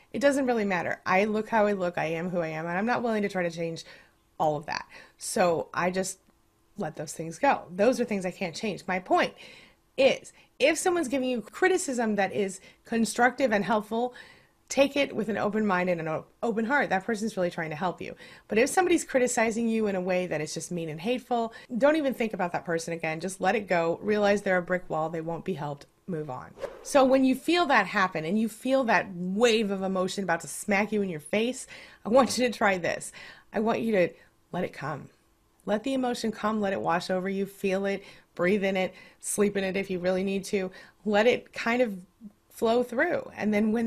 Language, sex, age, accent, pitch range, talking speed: English, female, 30-49, American, 180-250 Hz, 230 wpm